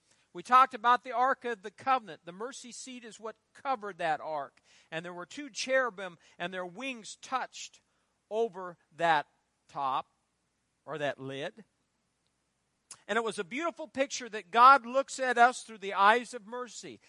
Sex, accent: male, American